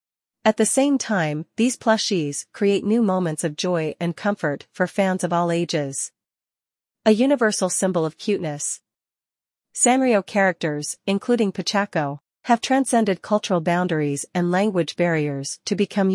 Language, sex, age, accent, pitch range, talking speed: English, female, 40-59, American, 160-200 Hz, 135 wpm